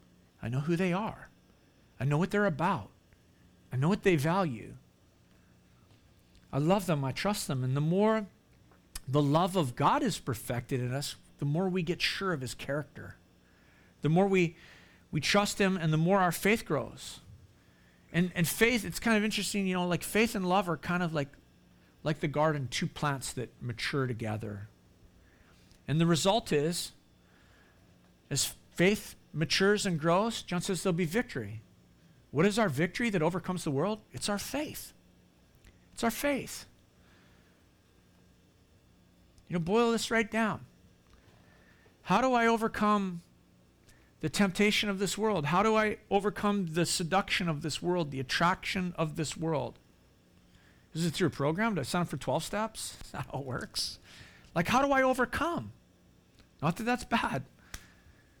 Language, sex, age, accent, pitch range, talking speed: English, male, 50-69, American, 145-205 Hz, 165 wpm